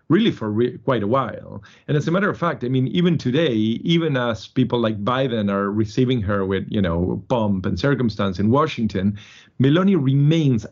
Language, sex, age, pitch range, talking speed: English, male, 40-59, 105-135 Hz, 185 wpm